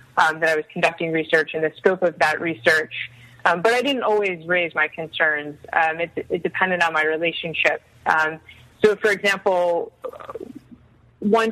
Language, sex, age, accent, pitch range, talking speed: English, female, 20-39, American, 155-180 Hz, 165 wpm